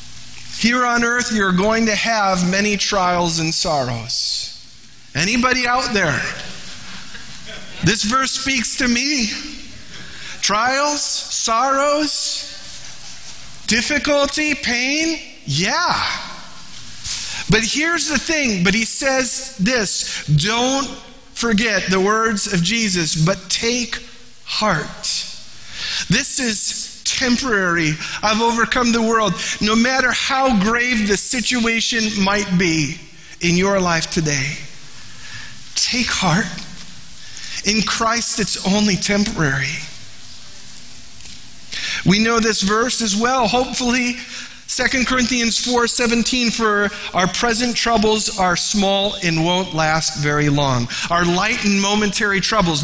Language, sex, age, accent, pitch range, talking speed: English, male, 40-59, American, 180-240 Hz, 105 wpm